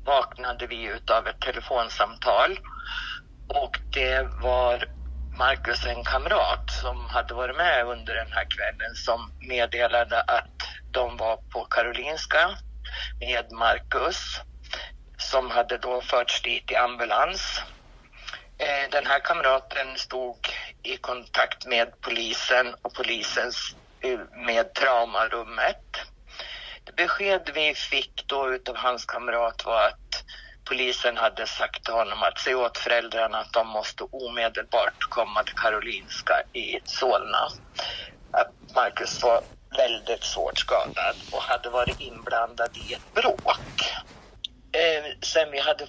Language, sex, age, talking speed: Swedish, male, 60-79, 115 wpm